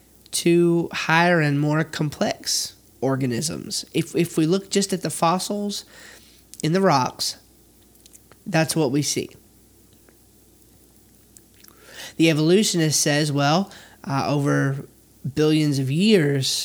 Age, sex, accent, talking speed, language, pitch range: 20-39, male, American, 110 wpm, English, 130-170 Hz